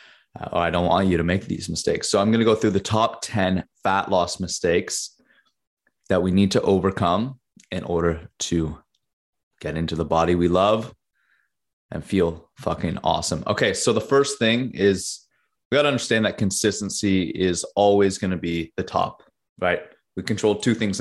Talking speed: 175 wpm